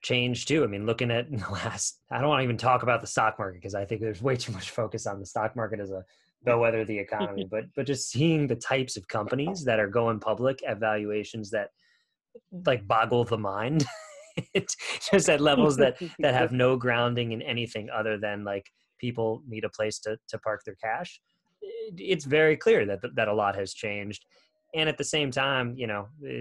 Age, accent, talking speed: 20-39, American, 215 wpm